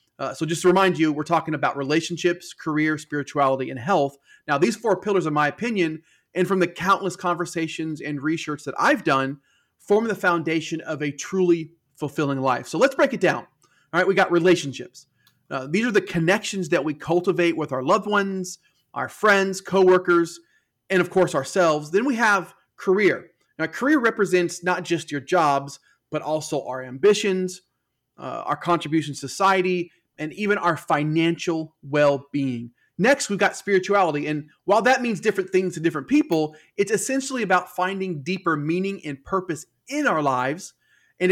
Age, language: 30-49, English